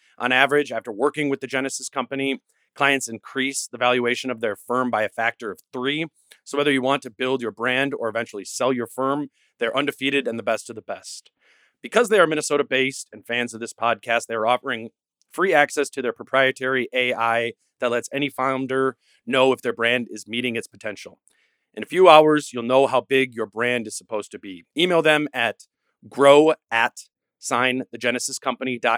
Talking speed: 190 wpm